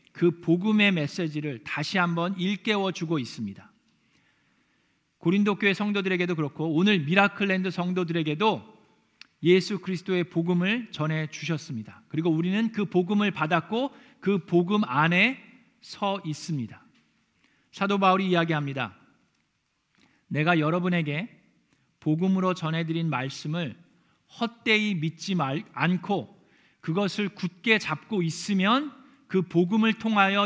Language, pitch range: Korean, 165-225 Hz